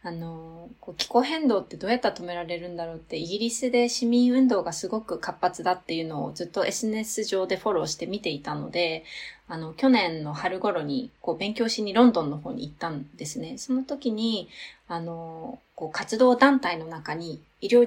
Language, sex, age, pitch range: Japanese, female, 20-39, 175-255 Hz